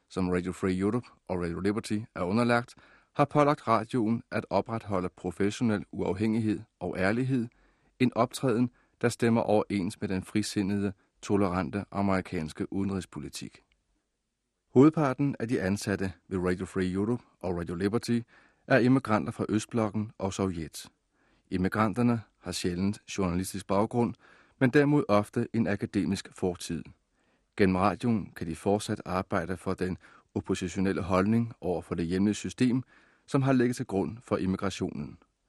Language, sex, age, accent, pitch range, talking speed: Danish, male, 30-49, native, 95-115 Hz, 135 wpm